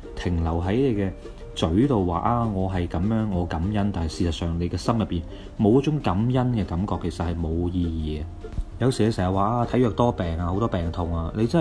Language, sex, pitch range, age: Chinese, male, 90-115 Hz, 30-49